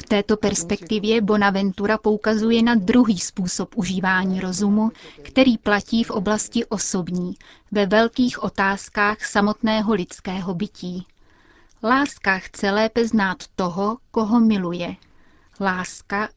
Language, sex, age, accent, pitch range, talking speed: Czech, female, 30-49, native, 190-220 Hz, 105 wpm